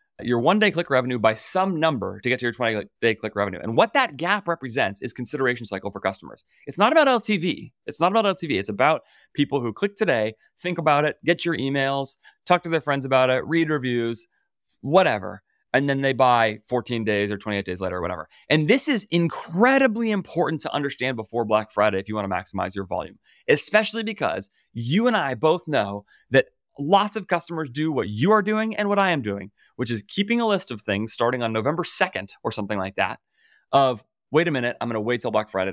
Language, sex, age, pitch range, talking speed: English, male, 30-49, 115-185 Hz, 215 wpm